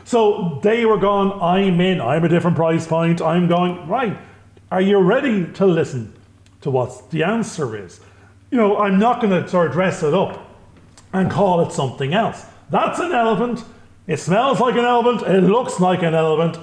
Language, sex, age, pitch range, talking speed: English, male, 40-59, 160-205 Hz, 190 wpm